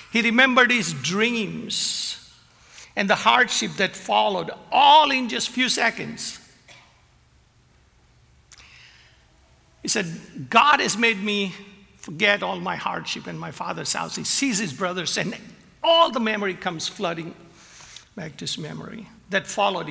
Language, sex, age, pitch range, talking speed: English, male, 60-79, 180-225 Hz, 135 wpm